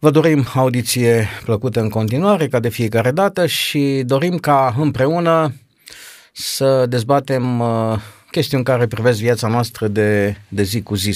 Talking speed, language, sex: 140 wpm, Romanian, male